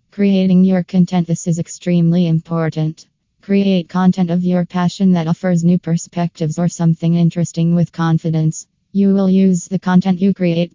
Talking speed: 155 wpm